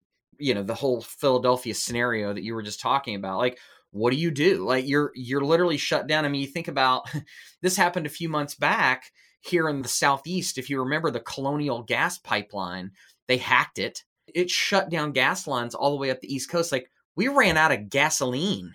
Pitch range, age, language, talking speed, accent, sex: 120-145 Hz, 20-39, English, 210 wpm, American, male